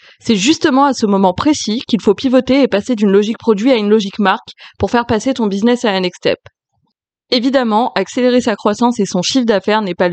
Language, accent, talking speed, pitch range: French, French, 220 wpm, 195-240 Hz